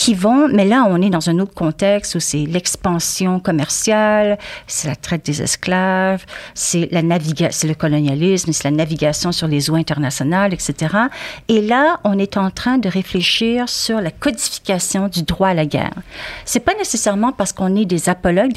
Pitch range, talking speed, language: 165-210 Hz, 185 wpm, French